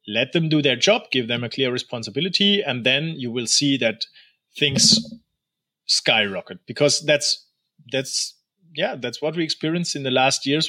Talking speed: 170 wpm